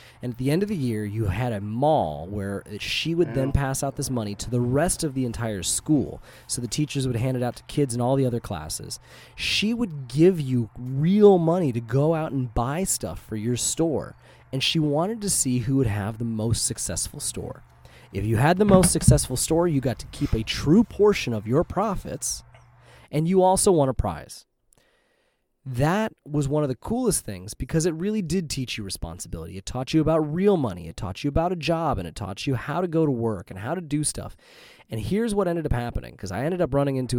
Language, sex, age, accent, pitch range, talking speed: English, male, 30-49, American, 110-155 Hz, 230 wpm